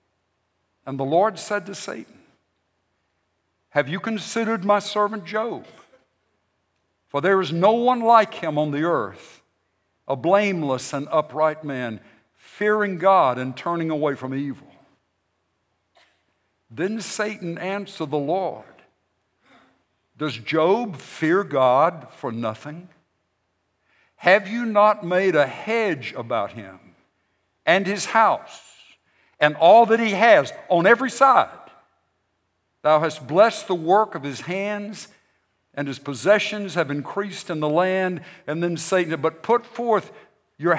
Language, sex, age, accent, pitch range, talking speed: English, male, 60-79, American, 115-195 Hz, 130 wpm